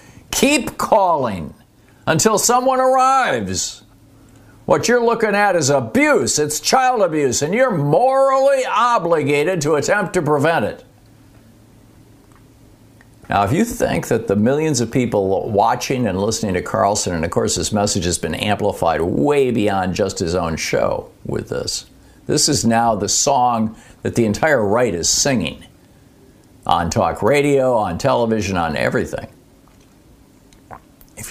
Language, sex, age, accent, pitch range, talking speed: English, male, 60-79, American, 110-180 Hz, 140 wpm